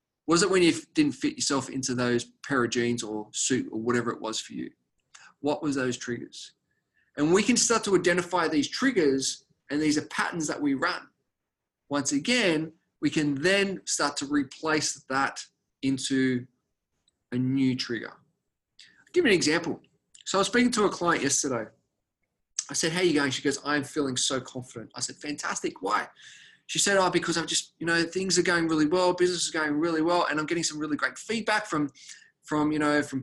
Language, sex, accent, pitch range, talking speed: English, male, Australian, 135-200 Hz, 200 wpm